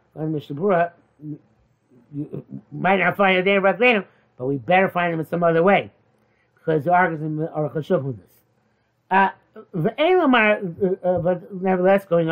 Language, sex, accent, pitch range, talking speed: English, male, American, 155-215 Hz, 135 wpm